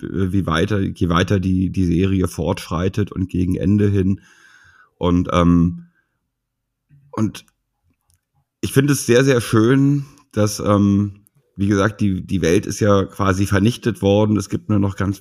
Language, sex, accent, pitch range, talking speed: German, male, German, 95-115 Hz, 150 wpm